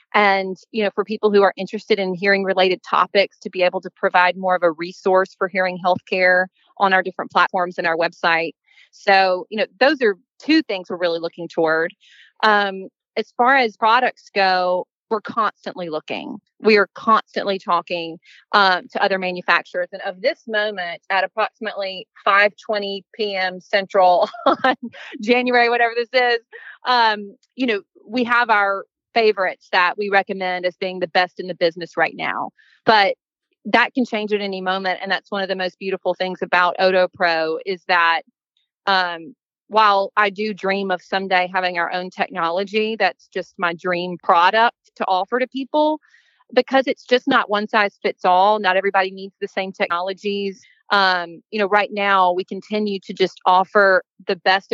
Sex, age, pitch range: female, 30-49, 180-215 Hz